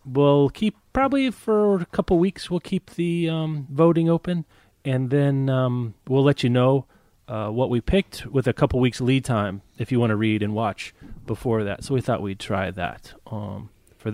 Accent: American